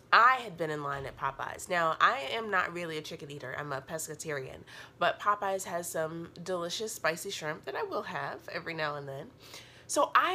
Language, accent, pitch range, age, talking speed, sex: English, American, 150-195 Hz, 30-49, 205 wpm, female